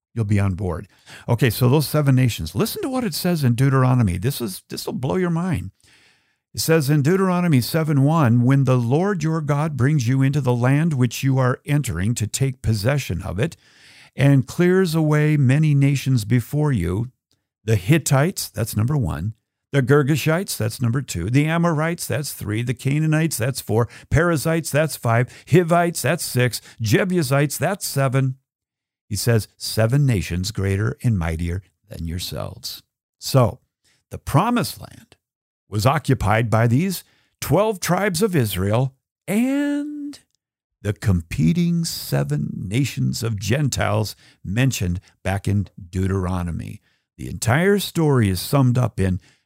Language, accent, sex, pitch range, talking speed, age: English, American, male, 110-150 Hz, 145 wpm, 50-69